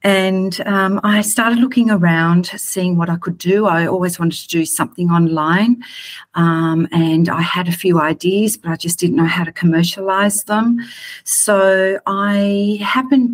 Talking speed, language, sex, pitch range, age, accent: 165 wpm, English, female, 165-195 Hz, 40-59, Australian